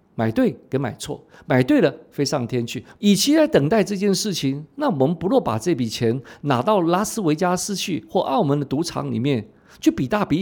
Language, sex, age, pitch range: Chinese, male, 50-69, 130-205 Hz